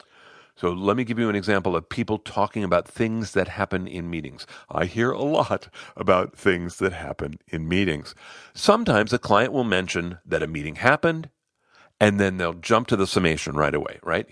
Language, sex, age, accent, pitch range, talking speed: English, male, 50-69, American, 90-120 Hz, 190 wpm